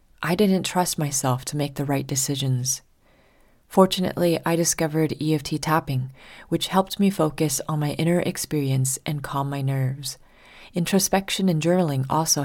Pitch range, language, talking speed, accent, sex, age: 140-175 Hz, English, 145 wpm, American, female, 30-49